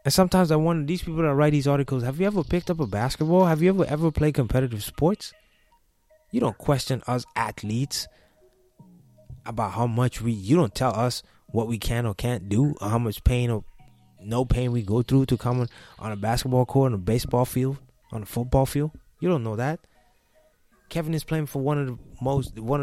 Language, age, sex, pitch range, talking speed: English, 20-39, male, 115-145 Hz, 205 wpm